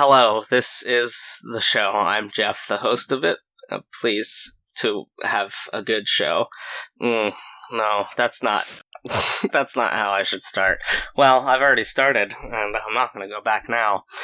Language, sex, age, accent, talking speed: English, male, 20-39, American, 165 wpm